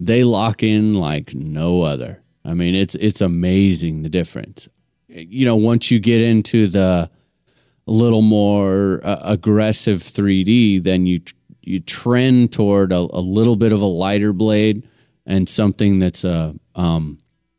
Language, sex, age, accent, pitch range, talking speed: English, male, 30-49, American, 90-115 Hz, 145 wpm